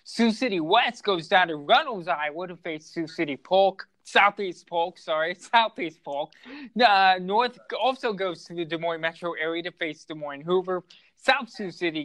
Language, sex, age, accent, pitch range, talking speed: English, male, 20-39, American, 150-180 Hz, 180 wpm